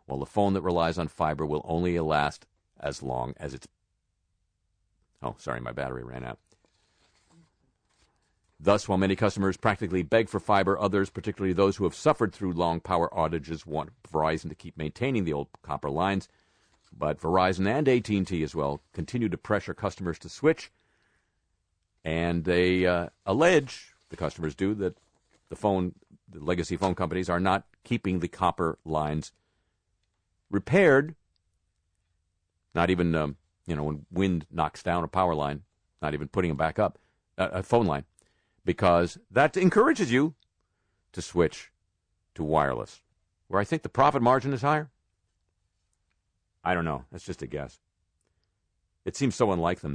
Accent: American